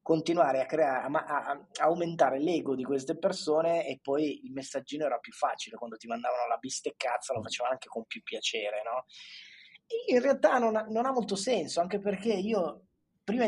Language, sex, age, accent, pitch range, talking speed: Italian, male, 20-39, native, 135-180 Hz, 190 wpm